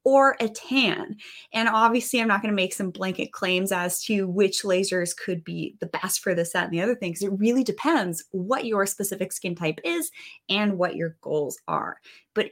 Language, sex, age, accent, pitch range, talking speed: English, female, 20-39, American, 185-255 Hz, 200 wpm